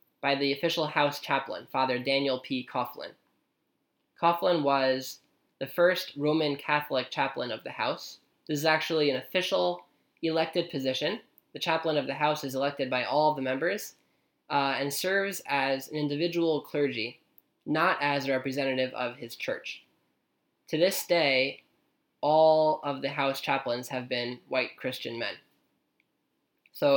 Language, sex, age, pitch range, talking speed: English, male, 10-29, 135-160 Hz, 145 wpm